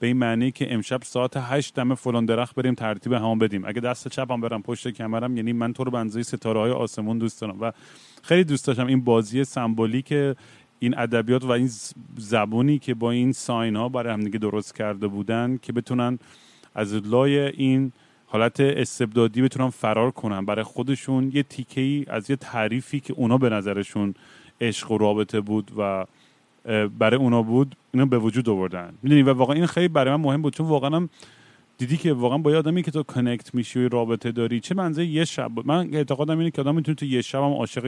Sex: male